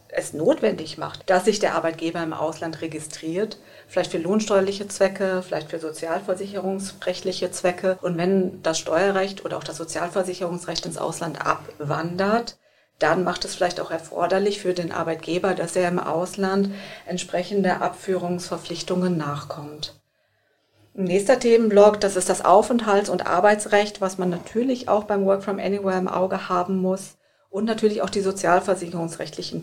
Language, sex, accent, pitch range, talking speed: German, female, German, 165-195 Hz, 140 wpm